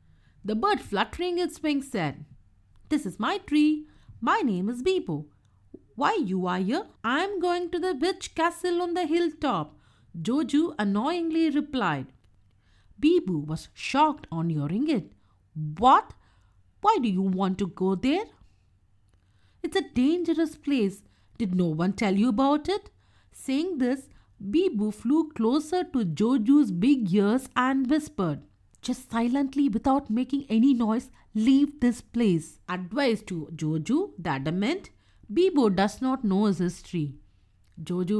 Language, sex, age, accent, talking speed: English, female, 50-69, Indian, 140 wpm